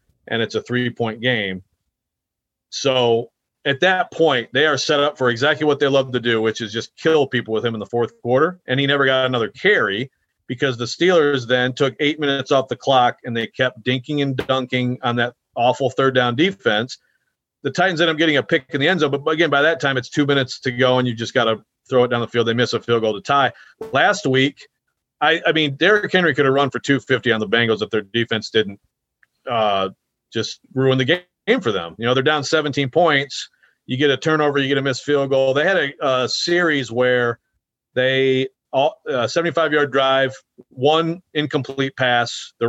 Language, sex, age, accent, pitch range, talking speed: English, male, 40-59, American, 120-145 Hz, 215 wpm